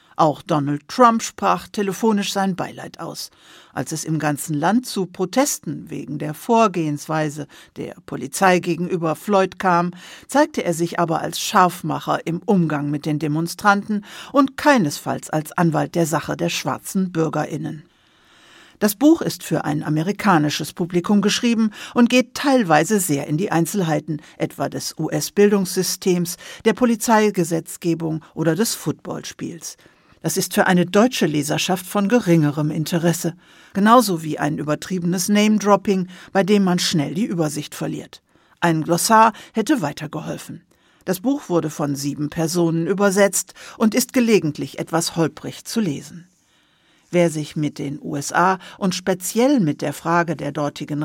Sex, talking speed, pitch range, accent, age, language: female, 140 wpm, 155-205 Hz, German, 60-79, German